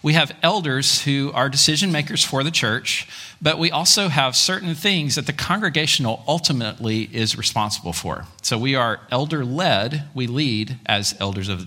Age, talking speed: 40-59, 175 wpm